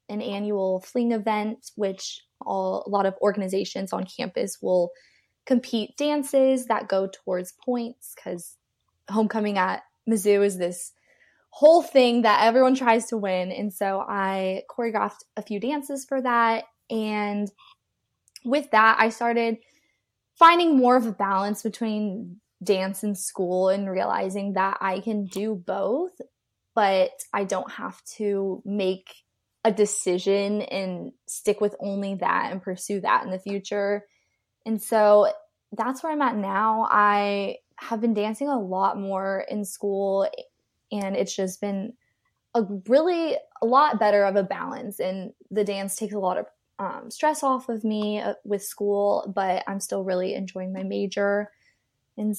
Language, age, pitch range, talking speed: English, 20-39, 195-235 Hz, 150 wpm